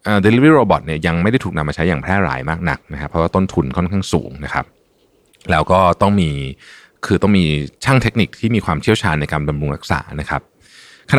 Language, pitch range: Thai, 75-100 Hz